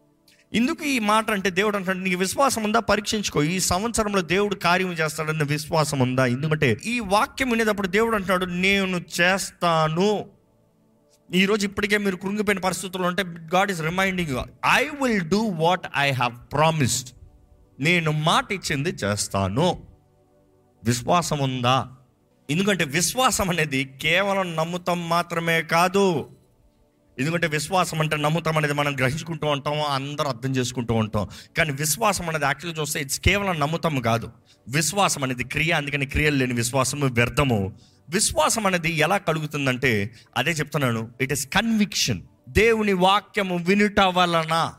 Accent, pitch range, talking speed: native, 135-195 Hz, 120 wpm